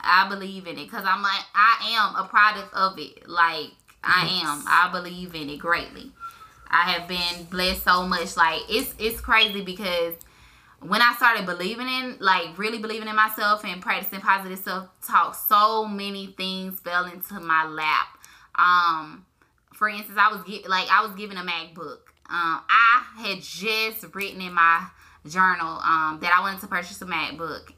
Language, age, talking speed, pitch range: English, 10-29, 175 wpm, 180-225 Hz